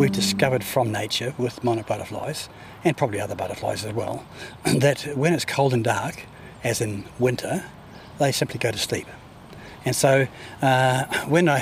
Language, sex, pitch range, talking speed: English, male, 120-140 Hz, 165 wpm